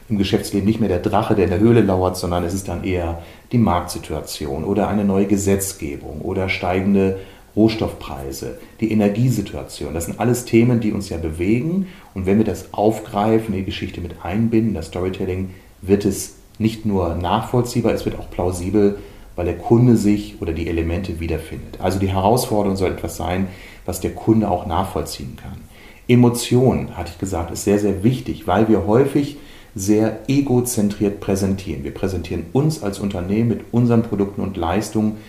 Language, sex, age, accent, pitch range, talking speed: German, male, 30-49, German, 90-110 Hz, 170 wpm